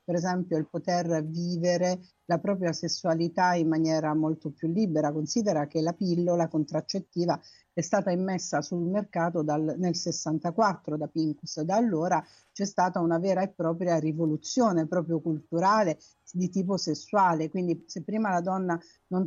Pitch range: 160-195 Hz